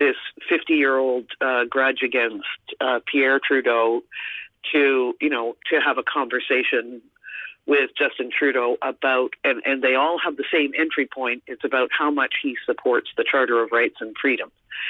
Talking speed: 160 wpm